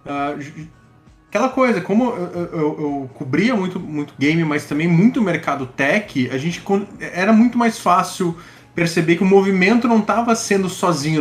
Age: 20-39